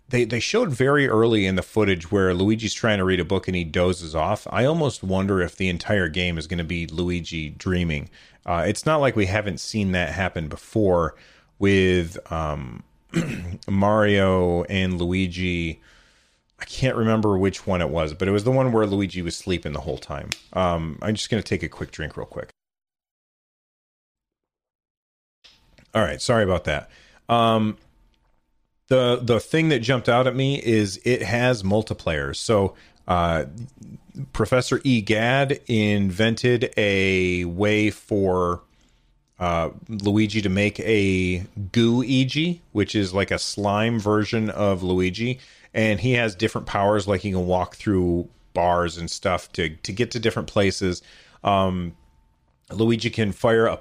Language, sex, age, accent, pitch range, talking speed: English, male, 30-49, American, 90-115 Hz, 160 wpm